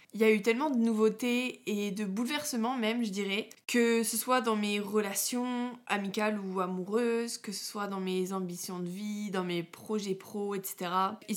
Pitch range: 190-220 Hz